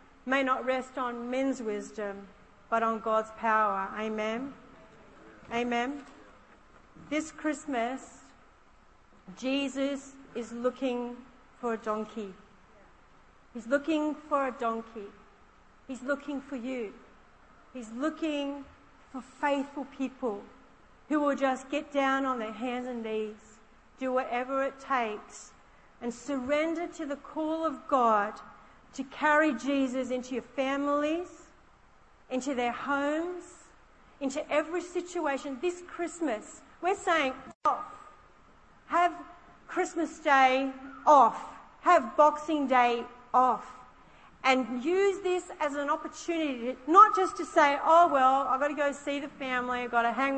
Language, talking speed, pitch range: English, 125 wpm, 245-300 Hz